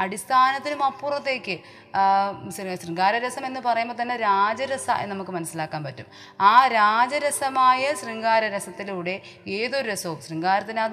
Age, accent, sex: 30-49, native, female